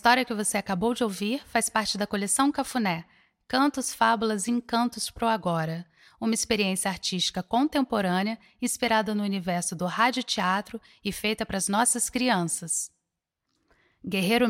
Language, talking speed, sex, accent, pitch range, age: Portuguese, 150 wpm, female, Brazilian, 185-225 Hz, 10-29